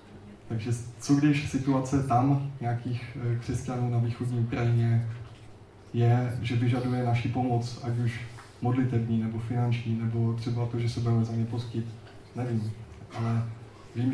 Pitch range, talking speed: 115-130 Hz, 135 wpm